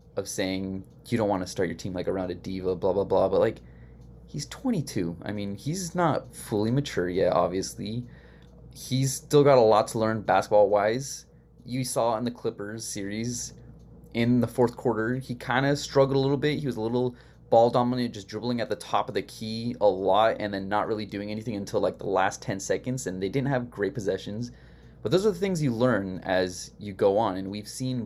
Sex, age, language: male, 20-39, English